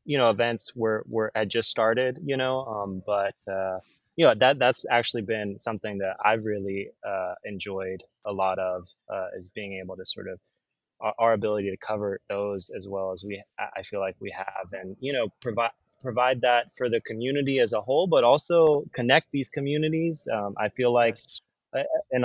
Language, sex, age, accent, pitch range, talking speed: English, male, 20-39, American, 100-125 Hz, 195 wpm